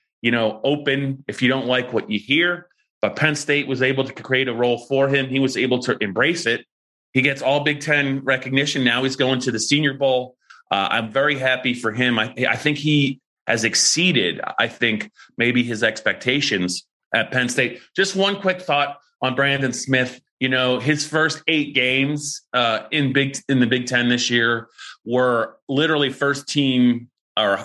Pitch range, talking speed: 120-140 Hz, 185 wpm